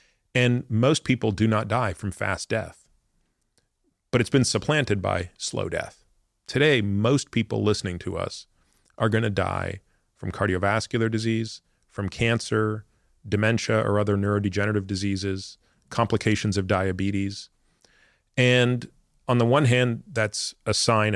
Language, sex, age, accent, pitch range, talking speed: English, male, 40-59, American, 95-115 Hz, 130 wpm